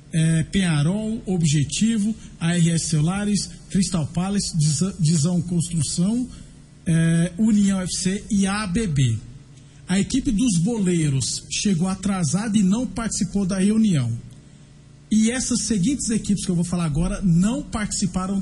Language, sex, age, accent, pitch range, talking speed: Portuguese, male, 50-69, Brazilian, 165-200 Hz, 115 wpm